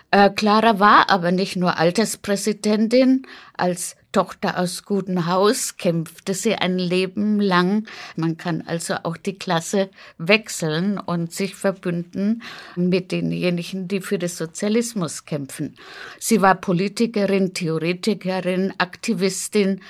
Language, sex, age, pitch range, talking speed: German, female, 60-79, 175-205 Hz, 120 wpm